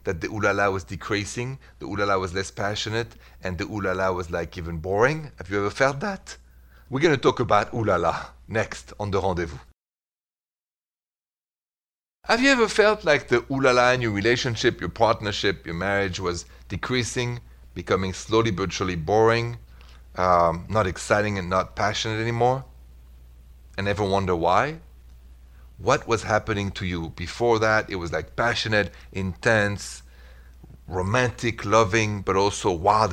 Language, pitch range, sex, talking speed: English, 75-120 Hz, male, 145 wpm